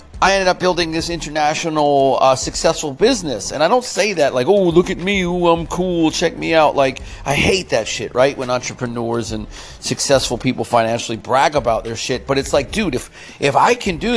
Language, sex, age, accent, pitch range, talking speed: English, male, 40-59, American, 125-165 Hz, 210 wpm